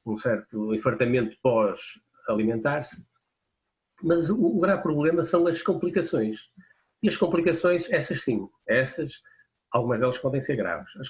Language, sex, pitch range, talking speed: Portuguese, male, 115-160 Hz, 130 wpm